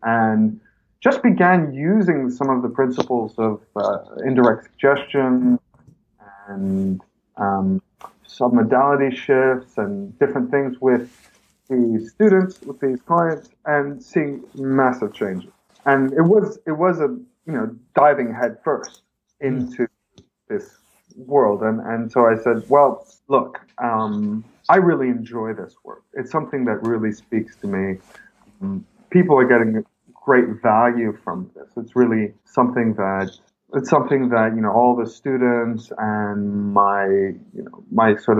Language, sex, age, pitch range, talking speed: English, male, 30-49, 110-140 Hz, 140 wpm